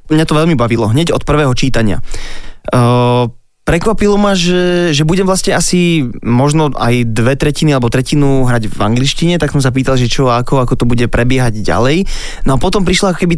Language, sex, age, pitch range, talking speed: Slovak, male, 20-39, 120-150 Hz, 185 wpm